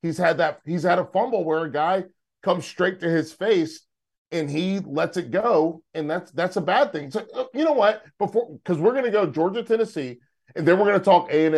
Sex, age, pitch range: male, 40-59, 140-180 Hz